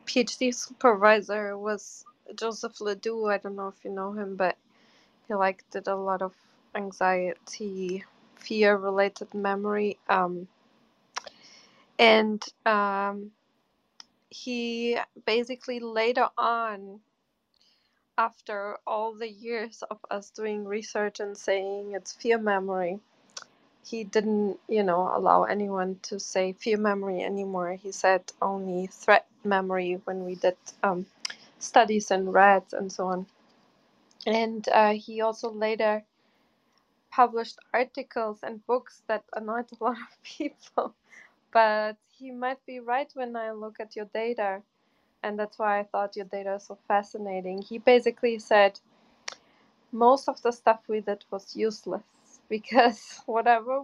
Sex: female